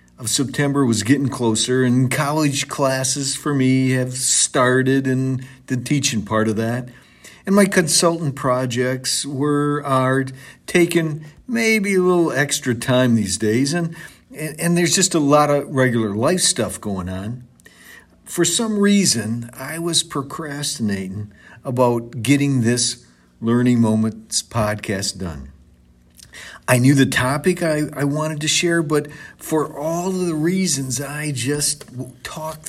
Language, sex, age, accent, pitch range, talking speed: English, male, 50-69, American, 120-155 Hz, 135 wpm